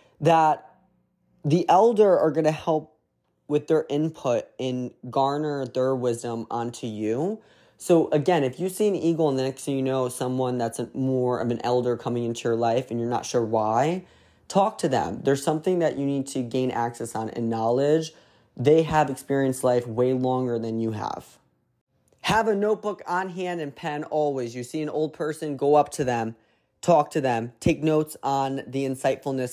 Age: 20-39